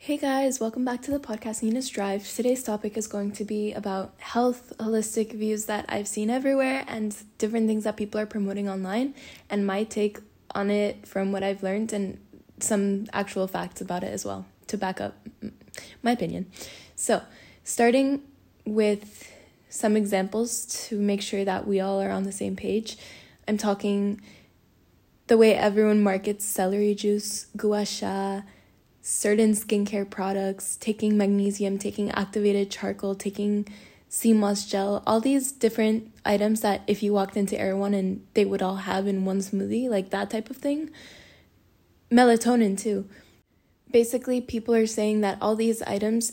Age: 10-29